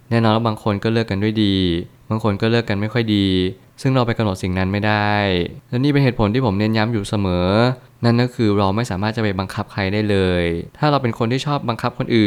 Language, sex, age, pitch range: Thai, male, 20-39, 100-120 Hz